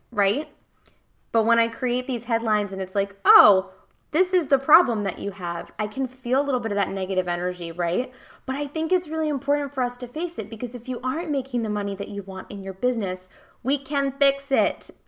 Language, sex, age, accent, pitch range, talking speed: English, female, 20-39, American, 200-260 Hz, 225 wpm